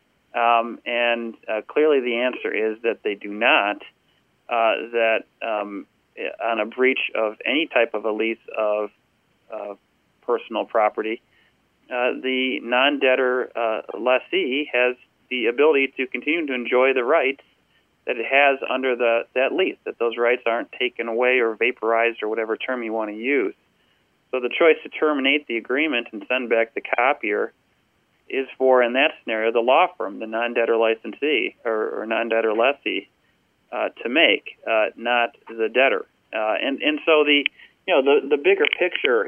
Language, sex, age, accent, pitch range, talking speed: English, male, 40-59, American, 115-140 Hz, 160 wpm